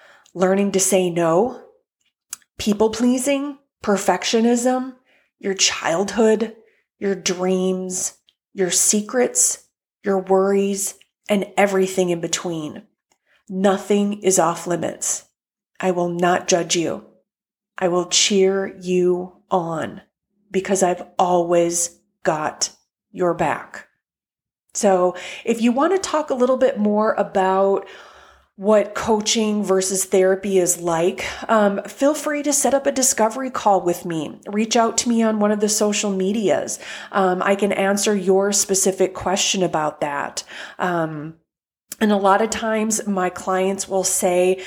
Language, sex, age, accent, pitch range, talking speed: English, female, 30-49, American, 185-215 Hz, 130 wpm